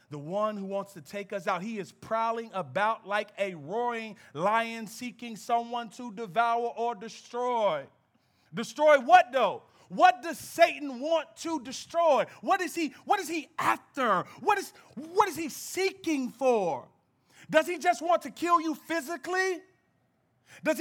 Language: English